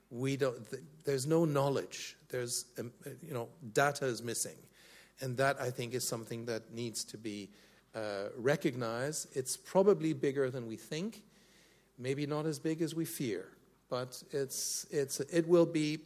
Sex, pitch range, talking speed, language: male, 115-150 Hz, 155 wpm, English